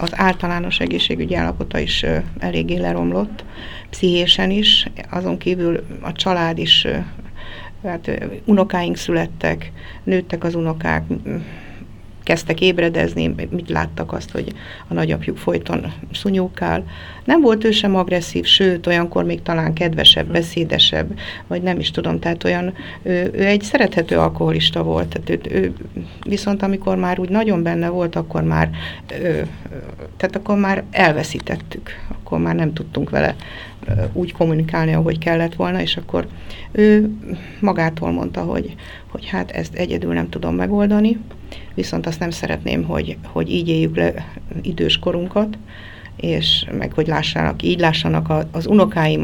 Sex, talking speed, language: female, 135 wpm, Hungarian